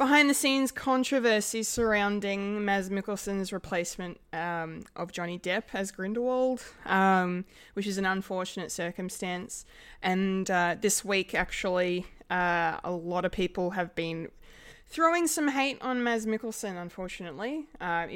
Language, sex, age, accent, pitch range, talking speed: English, female, 20-39, Australian, 175-210 Hz, 130 wpm